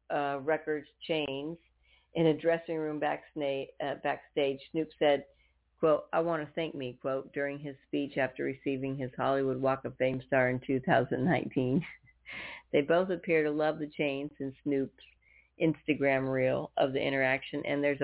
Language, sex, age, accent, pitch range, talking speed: English, female, 50-69, American, 130-155 Hz, 155 wpm